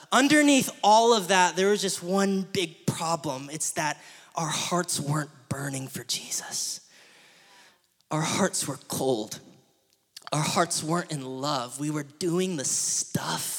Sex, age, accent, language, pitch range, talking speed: male, 20-39, American, English, 165-230 Hz, 140 wpm